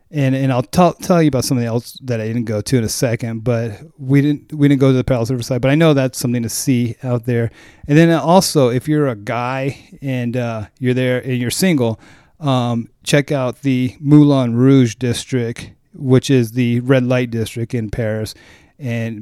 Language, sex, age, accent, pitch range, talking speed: English, male, 30-49, American, 120-155 Hz, 205 wpm